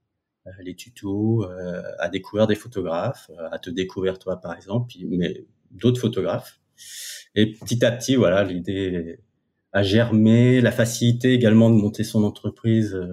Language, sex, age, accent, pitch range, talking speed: French, male, 30-49, French, 95-115 Hz, 145 wpm